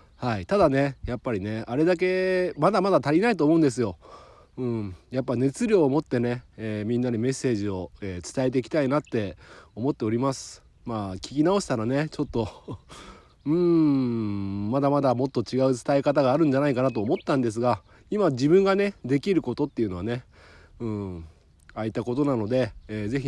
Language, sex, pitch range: Japanese, male, 105-145 Hz